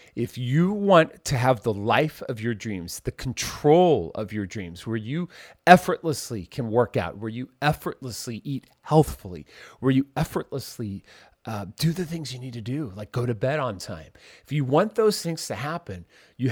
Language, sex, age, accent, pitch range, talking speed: English, male, 40-59, American, 110-155 Hz, 185 wpm